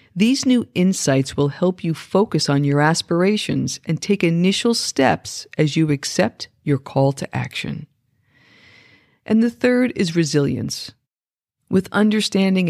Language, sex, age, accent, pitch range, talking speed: English, female, 50-69, American, 145-200 Hz, 130 wpm